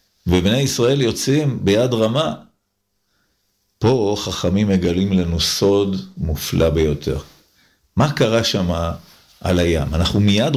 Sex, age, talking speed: male, 50-69, 110 wpm